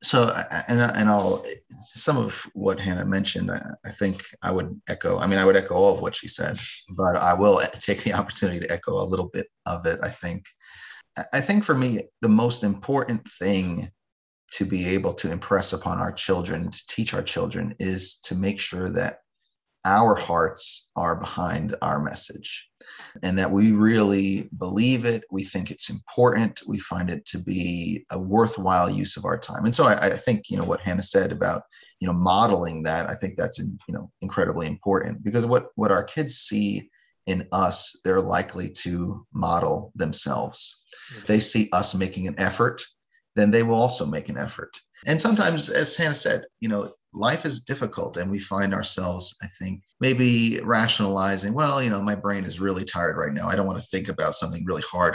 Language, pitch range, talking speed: English, 95-110 Hz, 190 wpm